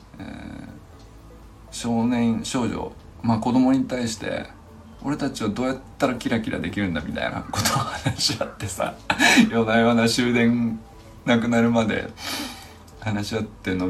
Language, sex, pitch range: Japanese, male, 90-115 Hz